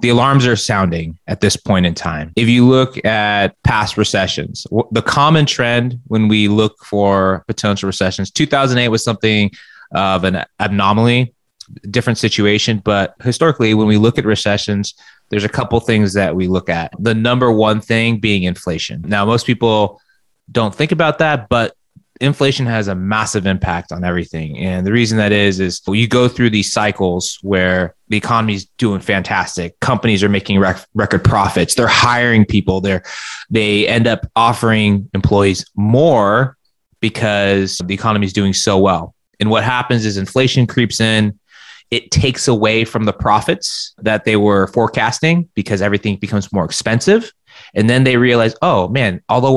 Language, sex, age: English, male, 20-39